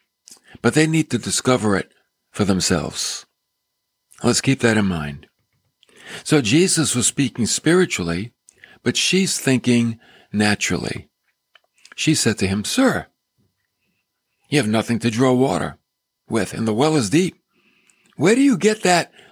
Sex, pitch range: male, 120-185 Hz